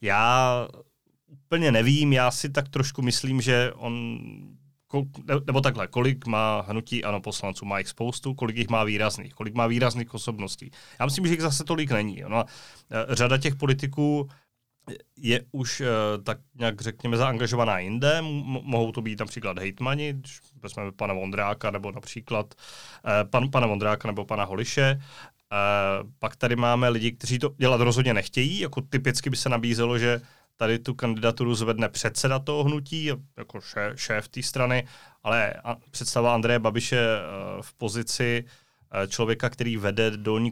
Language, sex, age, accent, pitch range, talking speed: Czech, male, 30-49, native, 110-130 Hz, 145 wpm